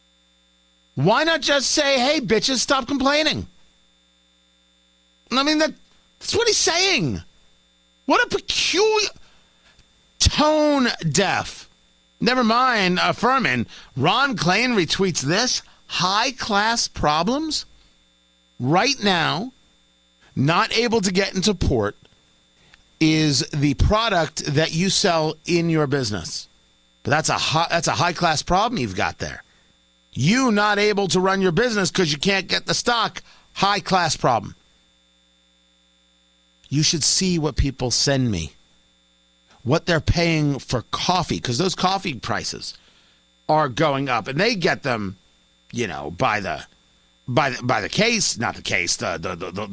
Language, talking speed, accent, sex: English, 135 wpm, American, male